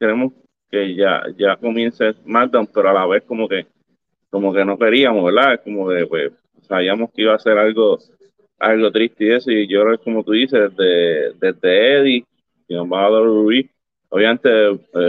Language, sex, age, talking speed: Spanish, male, 30-49, 185 wpm